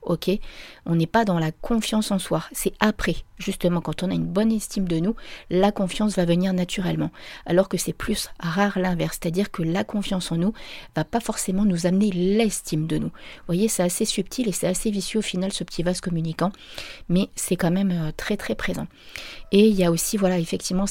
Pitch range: 170-200 Hz